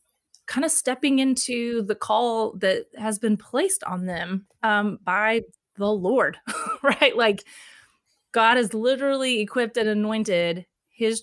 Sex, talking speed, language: female, 135 wpm, English